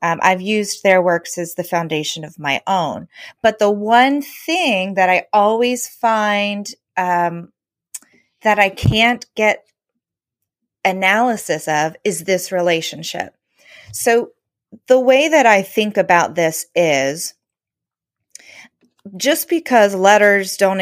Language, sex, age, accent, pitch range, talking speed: English, female, 30-49, American, 175-210 Hz, 120 wpm